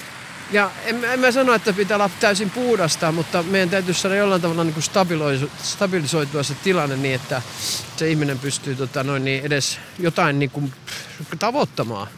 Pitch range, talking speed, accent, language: 140-195 Hz, 155 wpm, native, Finnish